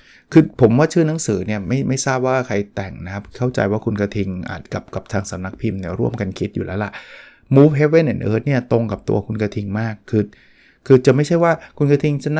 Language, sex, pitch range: Thai, male, 105-130 Hz